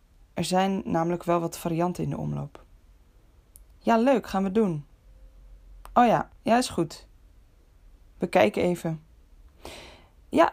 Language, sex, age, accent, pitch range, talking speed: Dutch, female, 20-39, Dutch, 140-195 Hz, 130 wpm